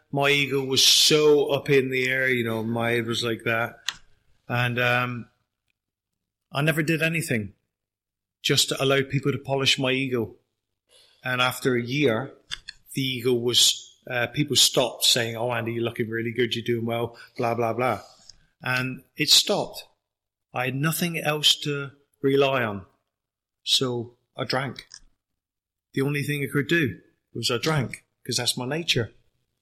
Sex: male